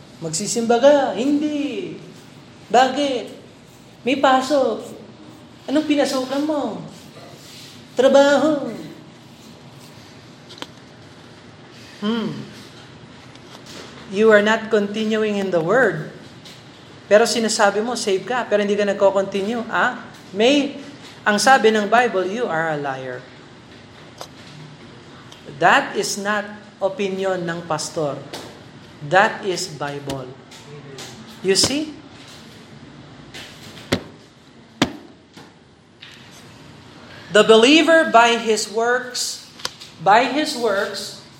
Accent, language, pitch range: native, Filipino, 185-260 Hz